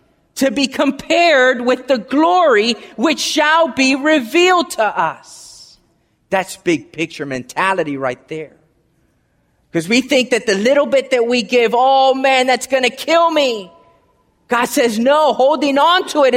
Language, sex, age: English, male, 30-49